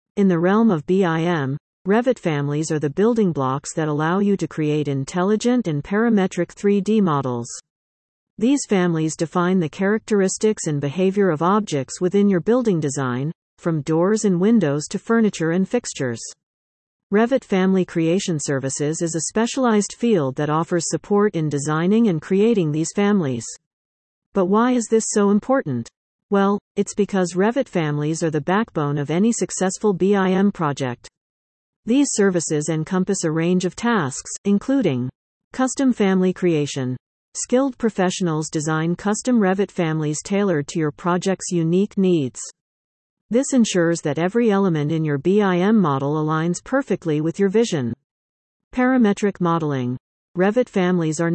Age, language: 50-69, English